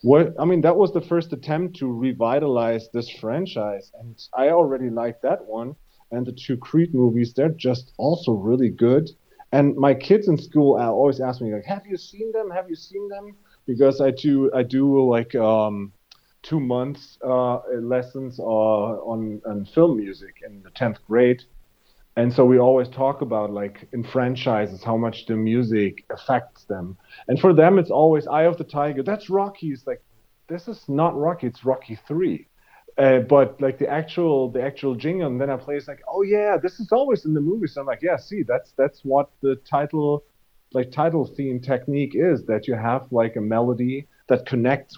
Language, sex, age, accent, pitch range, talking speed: English, male, 30-49, German, 120-150 Hz, 195 wpm